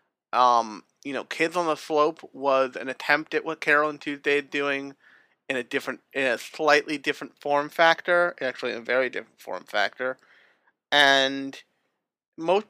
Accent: American